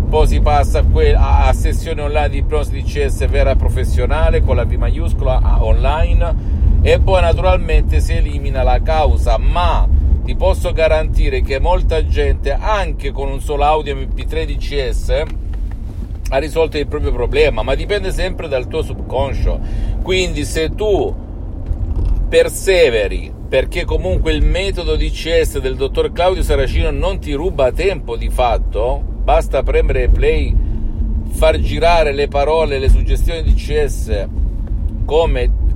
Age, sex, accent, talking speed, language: 50-69, male, native, 140 wpm, Italian